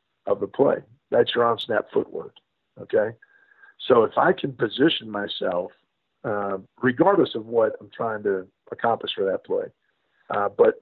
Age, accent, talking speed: 50-69, American, 155 wpm